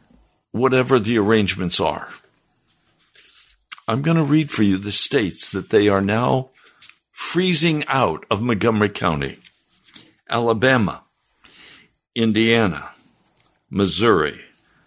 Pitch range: 110-150 Hz